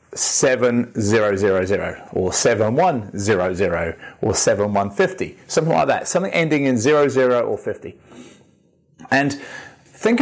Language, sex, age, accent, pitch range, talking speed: English, male, 30-49, British, 115-155 Hz, 135 wpm